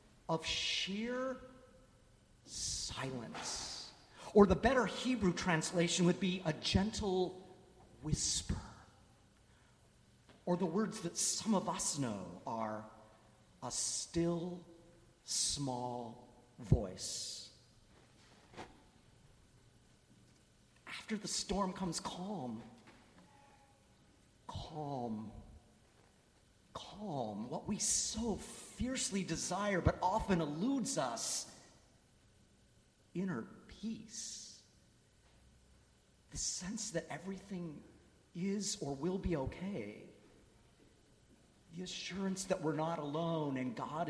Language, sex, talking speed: English, male, 85 wpm